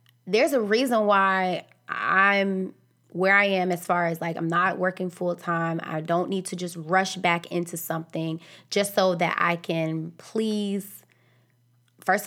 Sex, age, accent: female, 20-39, American